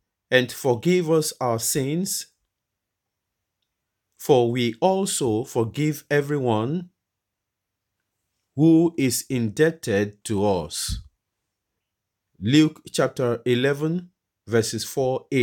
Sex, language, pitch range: male, English, 110-160 Hz